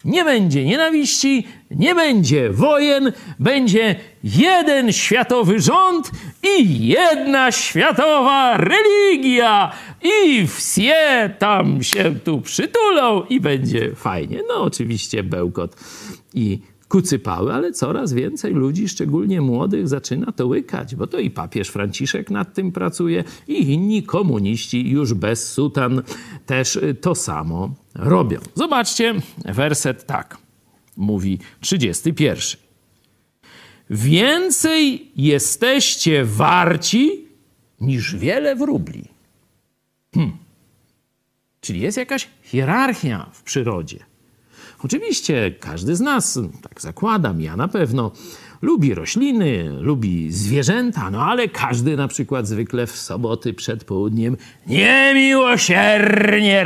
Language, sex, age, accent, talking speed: Polish, male, 50-69, native, 105 wpm